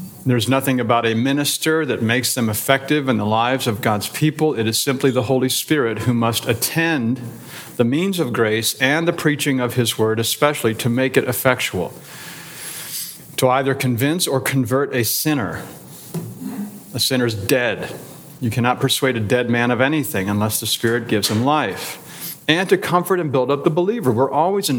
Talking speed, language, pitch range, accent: 180 wpm, English, 120-160 Hz, American